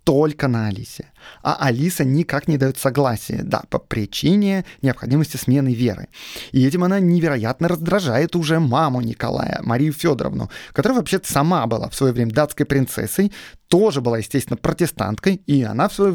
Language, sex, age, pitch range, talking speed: Russian, male, 30-49, 125-170 Hz, 155 wpm